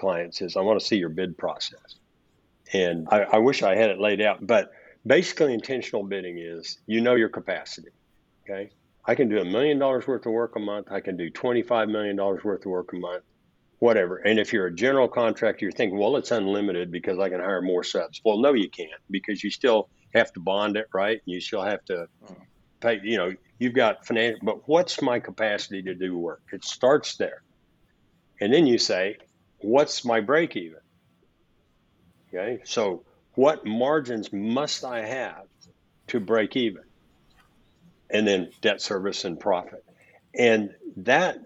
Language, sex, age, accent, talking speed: English, male, 60-79, American, 180 wpm